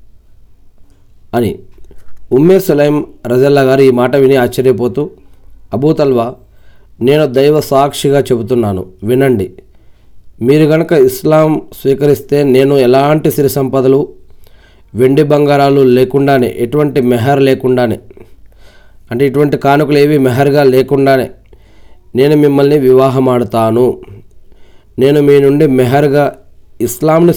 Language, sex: Telugu, male